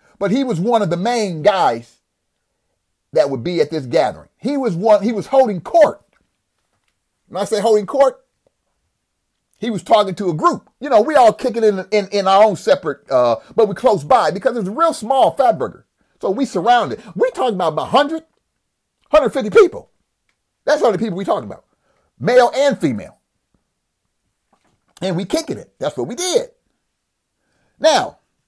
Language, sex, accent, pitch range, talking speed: English, male, American, 195-295 Hz, 175 wpm